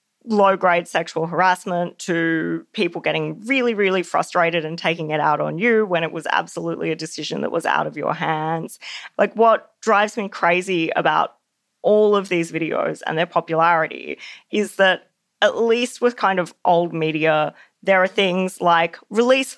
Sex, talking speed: female, 165 wpm